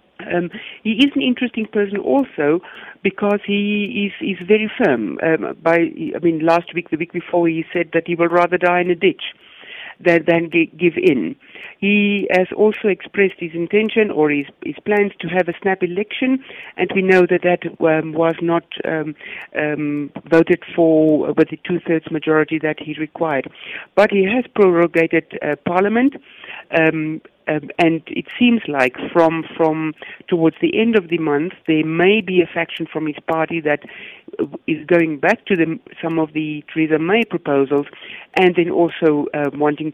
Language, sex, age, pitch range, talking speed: English, female, 60-79, 160-205 Hz, 175 wpm